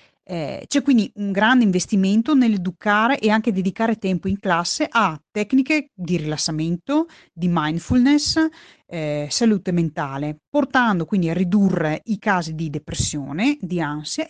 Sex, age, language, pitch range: female, 30-49, Italian, 165-225 Hz